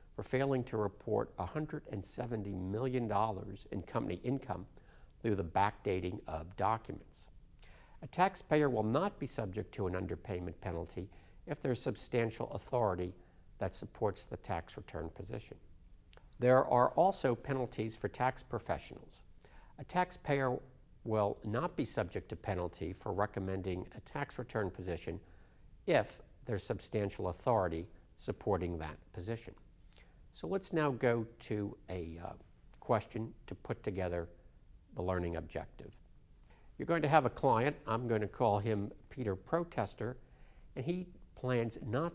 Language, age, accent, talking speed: English, 50-69, American, 130 wpm